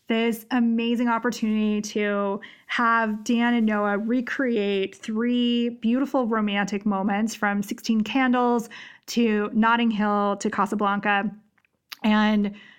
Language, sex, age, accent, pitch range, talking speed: English, female, 20-39, American, 210-245 Hz, 105 wpm